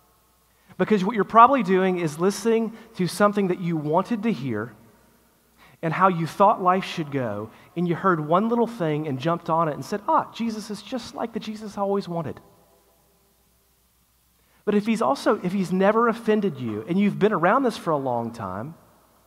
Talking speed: 190 wpm